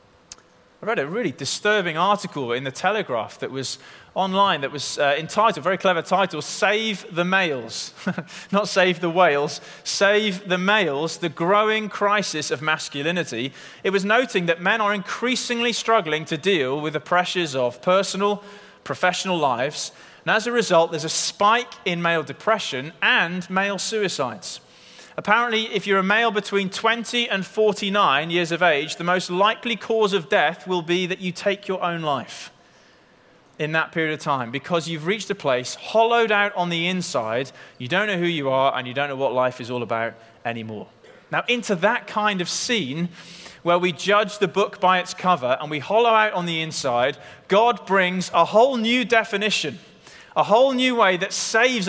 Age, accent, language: 30-49, British, English